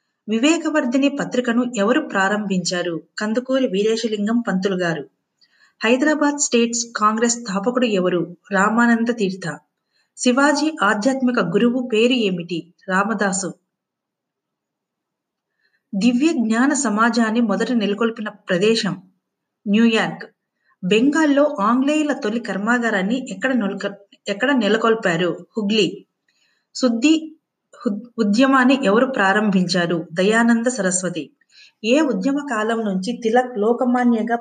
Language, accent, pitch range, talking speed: Telugu, native, 195-250 Hz, 80 wpm